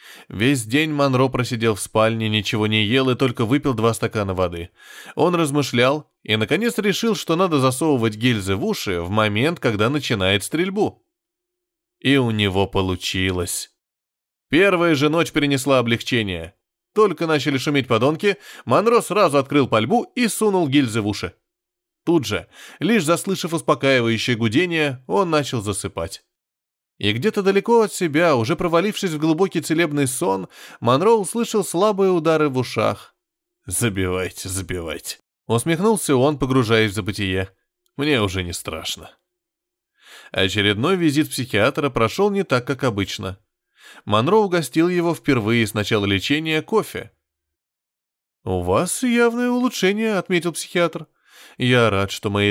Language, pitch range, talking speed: Russian, 105-175 Hz, 135 wpm